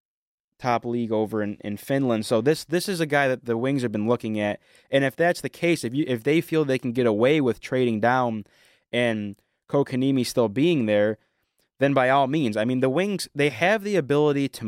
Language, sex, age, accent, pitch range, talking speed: English, male, 20-39, American, 110-135 Hz, 220 wpm